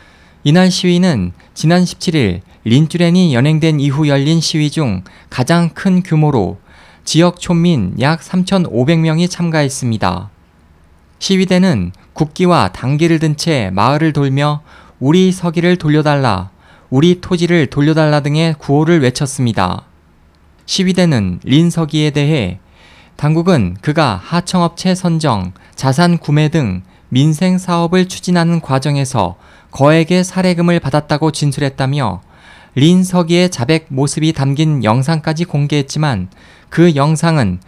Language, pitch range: Korean, 110-170 Hz